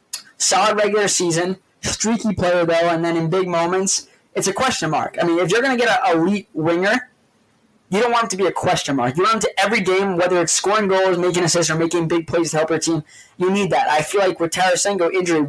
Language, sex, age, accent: English, male, 20-39, American